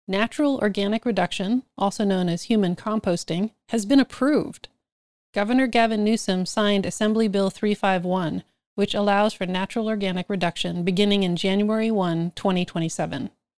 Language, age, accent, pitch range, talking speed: English, 30-49, American, 175-235 Hz, 130 wpm